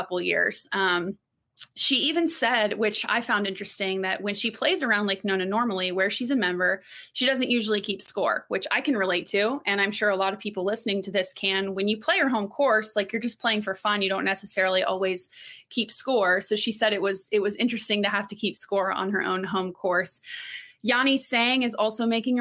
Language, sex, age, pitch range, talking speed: English, female, 20-39, 195-230 Hz, 225 wpm